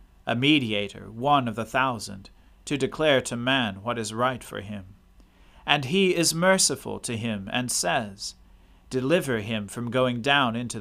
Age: 40-59